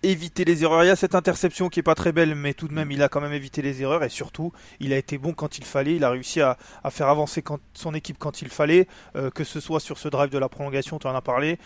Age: 20-39